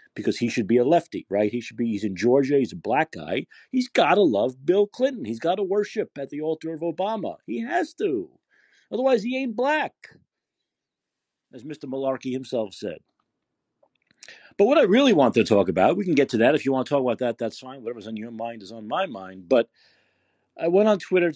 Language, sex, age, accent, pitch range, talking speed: English, male, 50-69, American, 115-190 Hz, 220 wpm